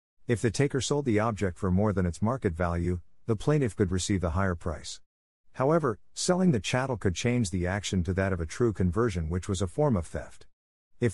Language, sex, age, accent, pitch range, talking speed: English, male, 50-69, American, 90-115 Hz, 215 wpm